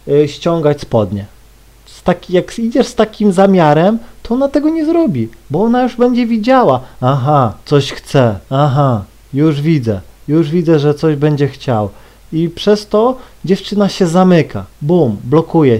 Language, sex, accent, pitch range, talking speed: Polish, male, native, 145-195 Hz, 140 wpm